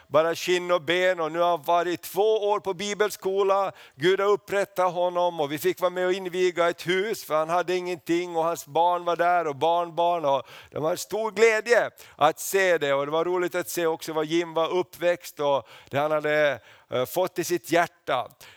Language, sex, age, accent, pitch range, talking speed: Swedish, male, 50-69, native, 145-180 Hz, 215 wpm